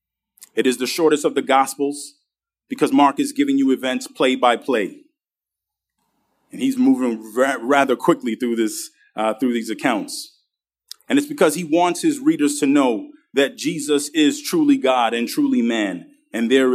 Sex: male